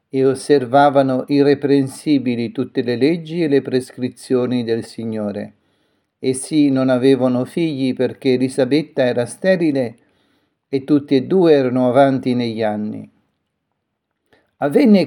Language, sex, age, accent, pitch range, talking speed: Italian, male, 50-69, native, 120-140 Hz, 110 wpm